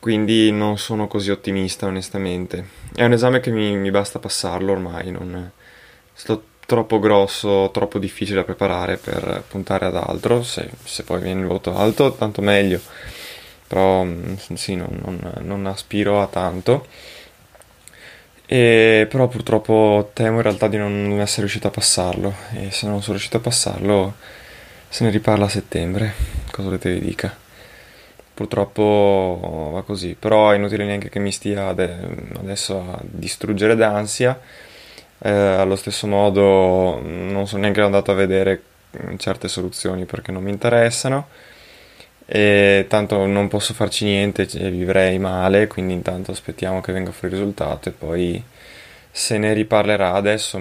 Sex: male